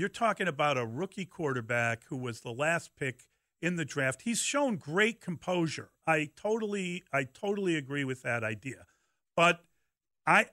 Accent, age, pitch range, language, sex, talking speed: American, 50-69, 130-175 Hz, English, male, 160 wpm